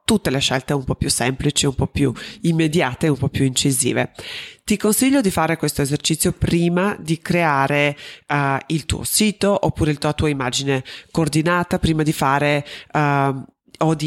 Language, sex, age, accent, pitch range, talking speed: Italian, female, 30-49, native, 140-175 Hz, 170 wpm